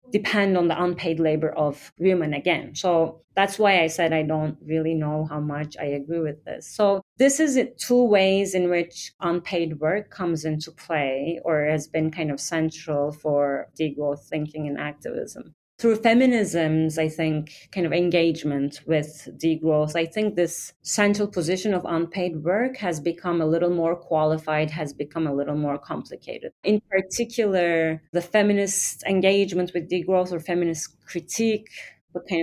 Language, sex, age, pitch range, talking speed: English, female, 30-49, 150-185 Hz, 160 wpm